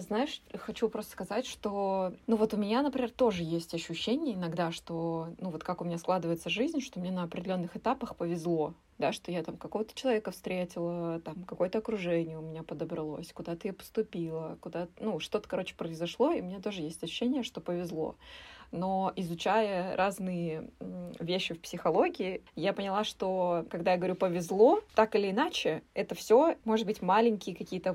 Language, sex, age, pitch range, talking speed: Russian, female, 20-39, 175-225 Hz, 170 wpm